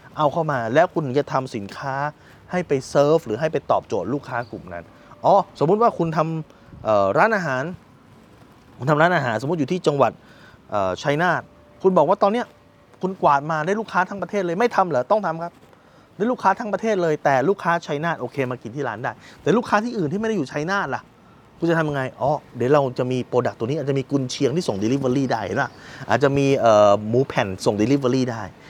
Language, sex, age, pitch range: Thai, male, 20-39, 125-175 Hz